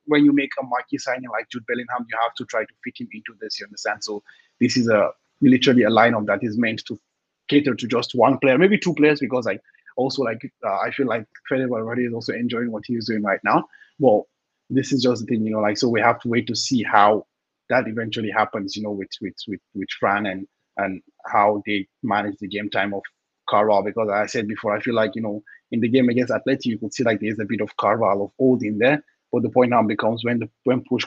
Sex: male